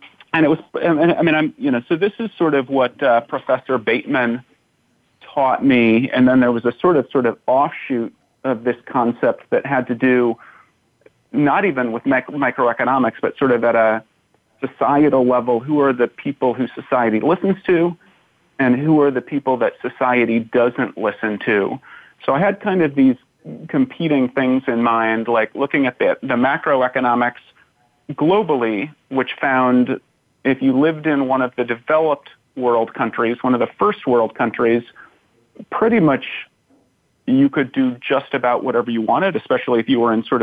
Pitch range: 115-140 Hz